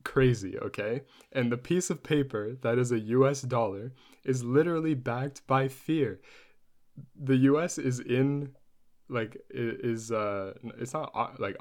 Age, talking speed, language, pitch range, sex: 20-39, 140 wpm, English, 110-135 Hz, male